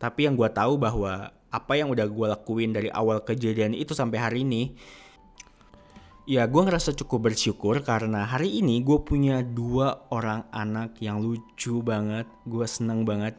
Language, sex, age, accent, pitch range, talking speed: Indonesian, male, 20-39, native, 105-120 Hz, 160 wpm